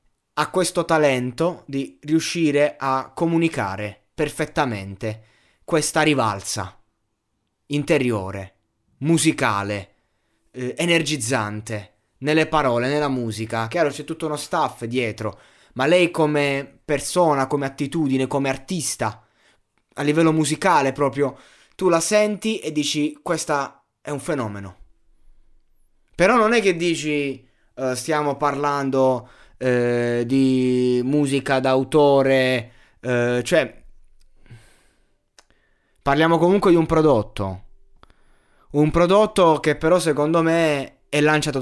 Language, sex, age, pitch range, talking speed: Italian, male, 20-39, 120-155 Hz, 100 wpm